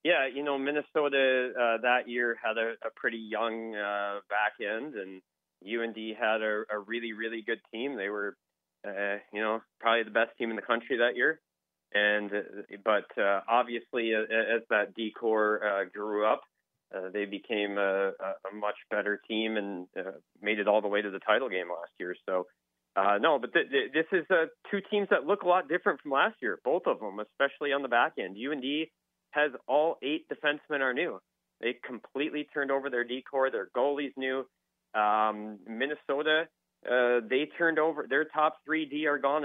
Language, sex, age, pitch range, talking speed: English, male, 30-49, 105-140 Hz, 195 wpm